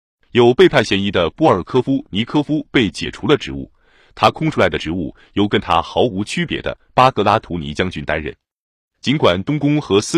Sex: male